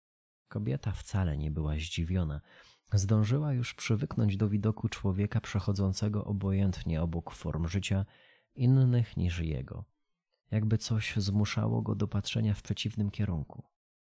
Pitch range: 95-115 Hz